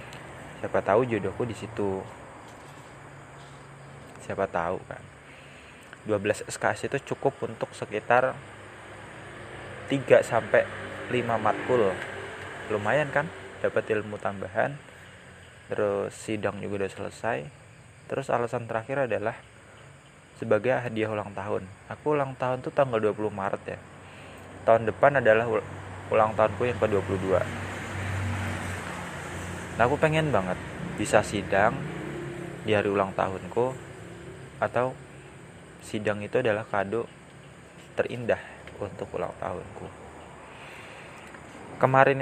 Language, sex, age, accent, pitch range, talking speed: Indonesian, male, 20-39, native, 100-135 Hz, 100 wpm